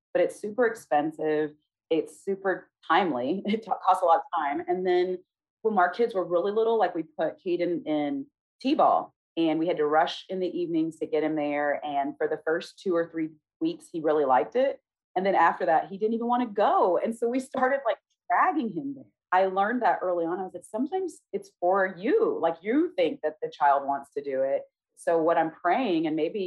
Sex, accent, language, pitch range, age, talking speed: female, American, English, 150-220 Hz, 30-49, 220 wpm